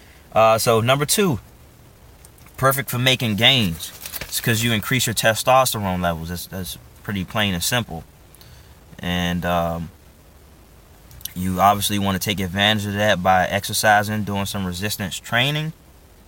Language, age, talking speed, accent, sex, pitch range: English, 20-39, 135 wpm, American, male, 90-115 Hz